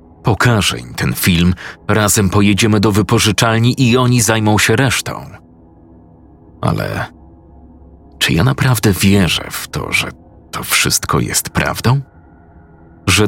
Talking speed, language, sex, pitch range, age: 115 wpm, Polish, male, 90-115 Hz, 40-59